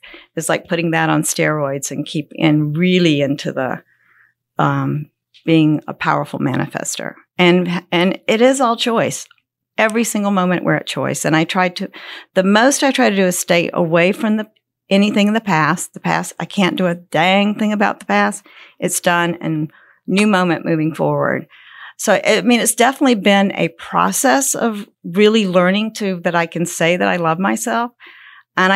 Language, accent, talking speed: English, American, 180 wpm